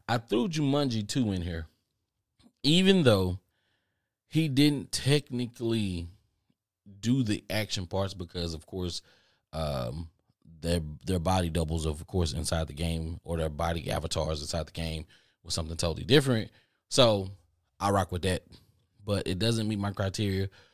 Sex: male